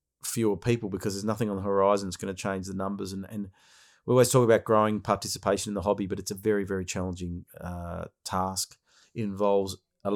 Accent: Australian